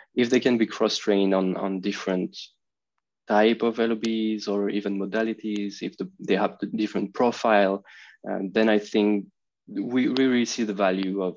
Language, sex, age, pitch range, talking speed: English, male, 20-39, 100-115 Hz, 170 wpm